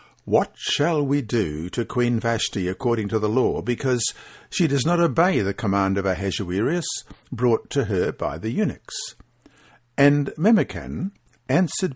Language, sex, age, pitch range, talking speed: English, male, 60-79, 105-145 Hz, 145 wpm